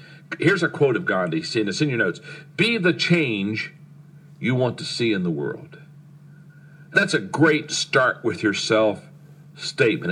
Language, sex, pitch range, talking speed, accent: English, male, 130-155 Hz, 165 wpm, American